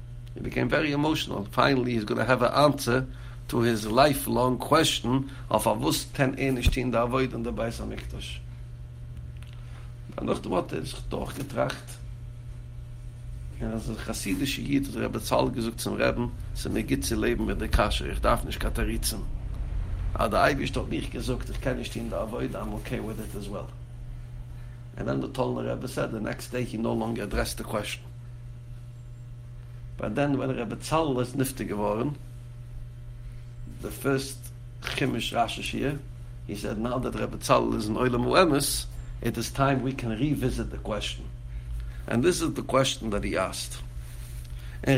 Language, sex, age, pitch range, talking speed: English, male, 60-79, 90-125 Hz, 110 wpm